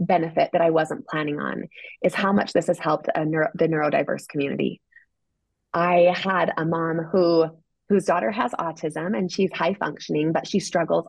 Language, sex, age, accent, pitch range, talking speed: English, female, 20-39, American, 165-215 Hz, 180 wpm